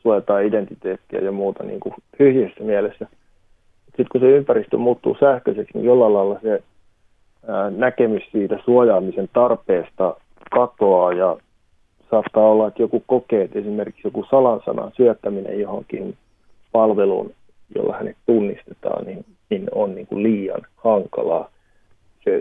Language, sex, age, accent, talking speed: Finnish, male, 30-49, native, 130 wpm